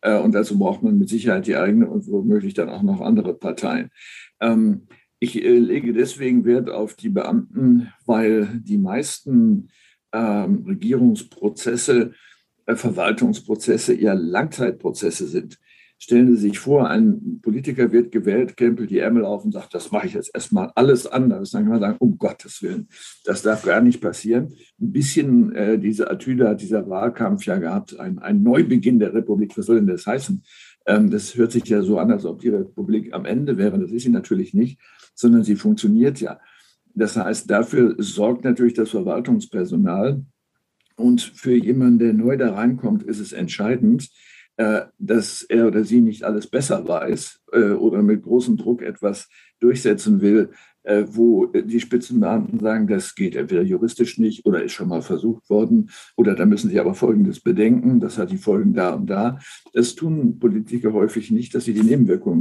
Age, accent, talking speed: 60-79, German, 170 wpm